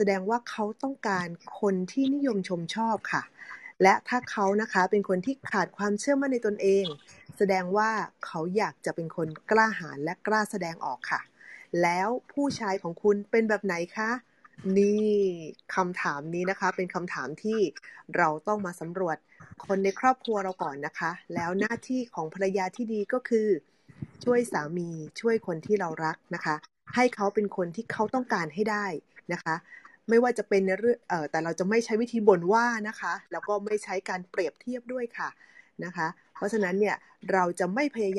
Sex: female